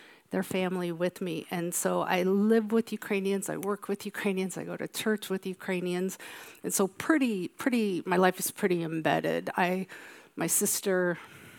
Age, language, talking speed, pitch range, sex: 50-69, English, 165 wpm, 170-200 Hz, female